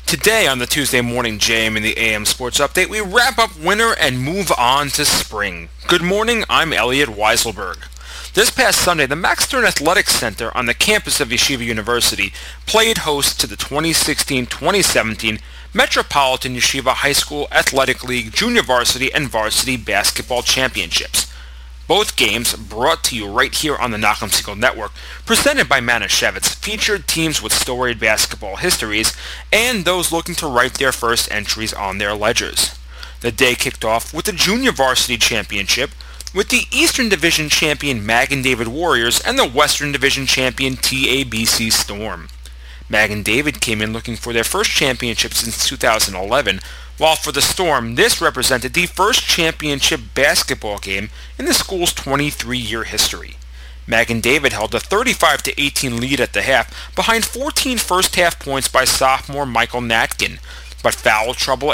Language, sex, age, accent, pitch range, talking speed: English, male, 30-49, American, 110-155 Hz, 155 wpm